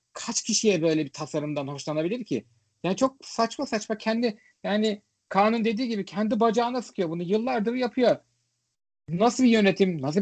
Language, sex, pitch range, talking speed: Turkish, male, 145-210 Hz, 155 wpm